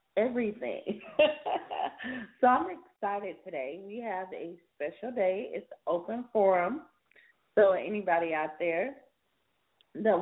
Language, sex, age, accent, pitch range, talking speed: English, female, 30-49, American, 175-230 Hz, 105 wpm